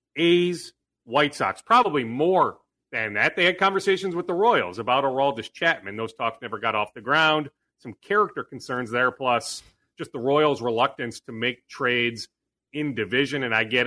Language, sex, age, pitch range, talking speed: English, male, 40-59, 120-150 Hz, 175 wpm